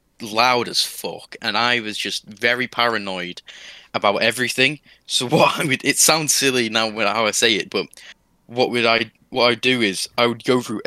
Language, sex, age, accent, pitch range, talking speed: English, male, 10-29, British, 100-125 Hz, 195 wpm